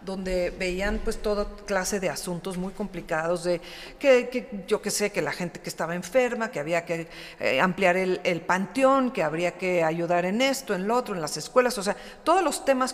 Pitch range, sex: 185-230 Hz, female